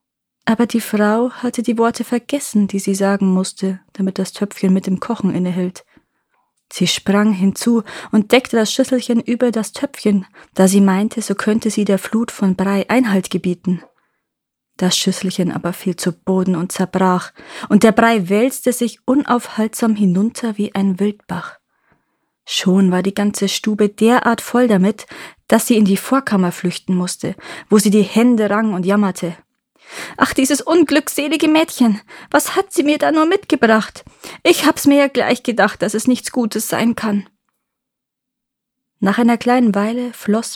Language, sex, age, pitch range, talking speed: German, female, 20-39, 190-235 Hz, 160 wpm